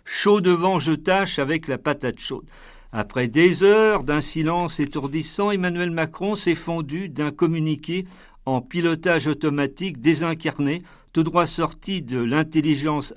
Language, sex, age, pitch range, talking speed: French, male, 50-69, 145-180 Hz, 140 wpm